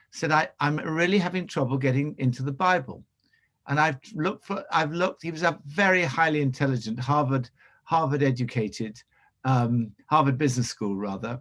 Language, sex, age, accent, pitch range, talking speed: English, male, 60-79, British, 125-165 Hz, 160 wpm